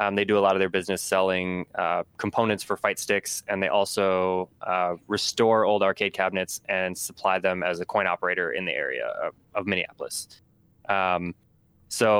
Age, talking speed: 20-39, 180 wpm